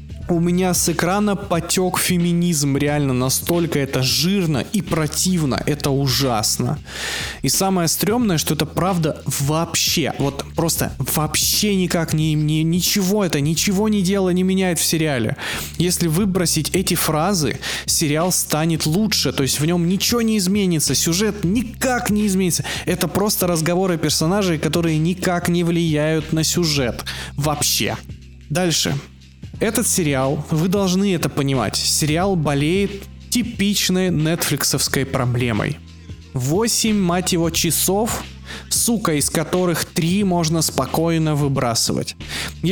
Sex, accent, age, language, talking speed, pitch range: male, native, 20-39, Russian, 125 wpm, 145-185 Hz